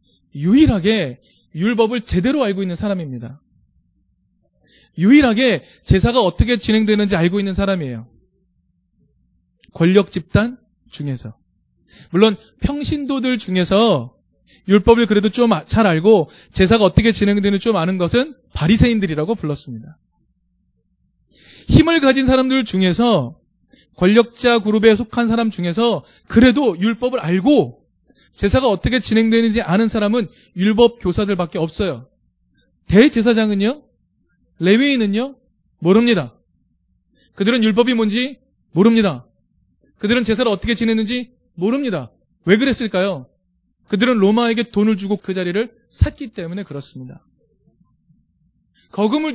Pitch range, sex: 180-235 Hz, male